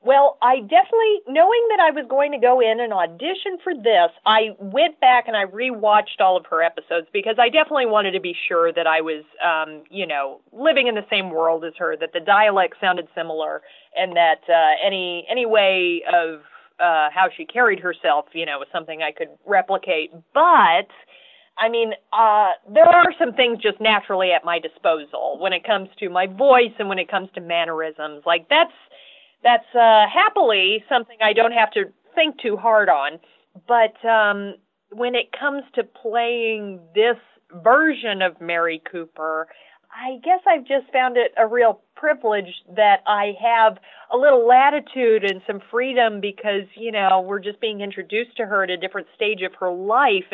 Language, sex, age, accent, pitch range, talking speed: English, female, 40-59, American, 180-250 Hz, 185 wpm